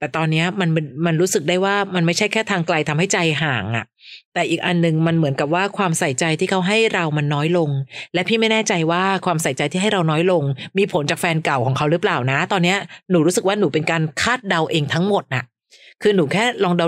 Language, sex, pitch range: Thai, female, 150-190 Hz